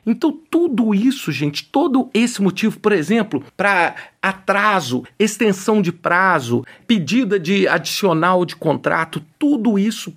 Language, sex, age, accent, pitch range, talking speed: Portuguese, male, 50-69, Brazilian, 155-220 Hz, 125 wpm